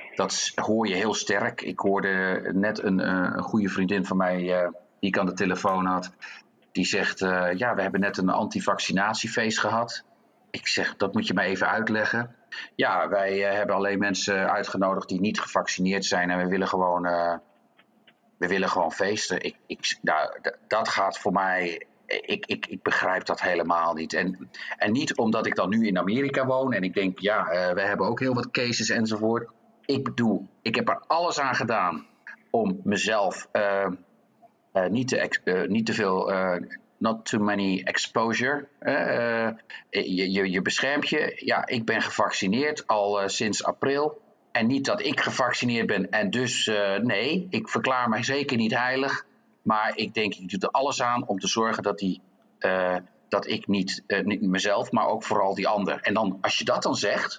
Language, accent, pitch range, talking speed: English, Dutch, 95-115 Hz, 180 wpm